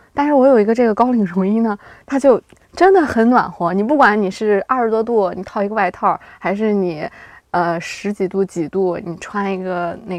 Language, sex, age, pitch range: Chinese, female, 20-39, 185-235 Hz